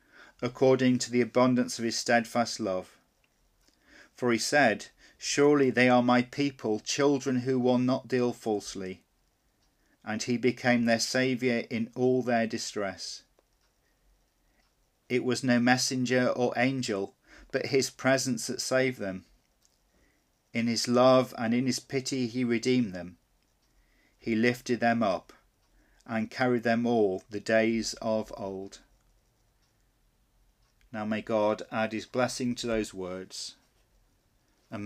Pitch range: 110-125 Hz